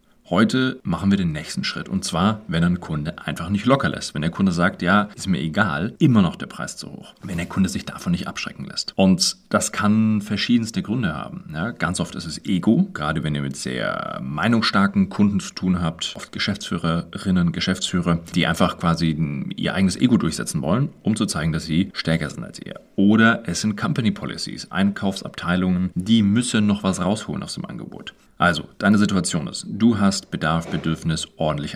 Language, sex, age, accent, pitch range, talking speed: German, male, 30-49, German, 85-105 Hz, 190 wpm